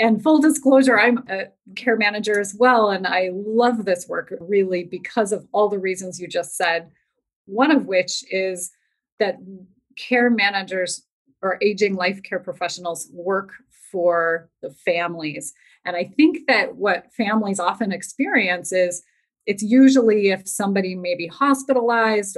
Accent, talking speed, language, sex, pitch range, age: American, 145 wpm, English, female, 180-225 Hz, 30-49